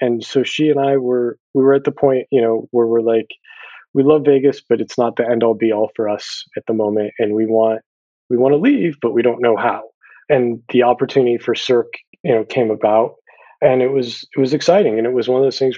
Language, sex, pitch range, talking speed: English, male, 115-140 Hz, 250 wpm